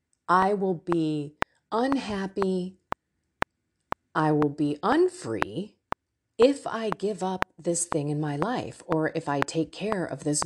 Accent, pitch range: American, 160-225 Hz